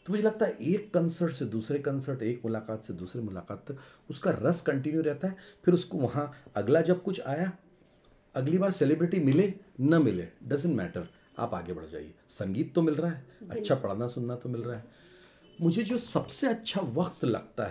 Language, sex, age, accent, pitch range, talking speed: English, male, 40-59, Indian, 105-175 Hz, 185 wpm